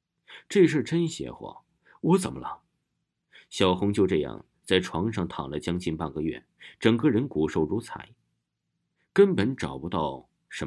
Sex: male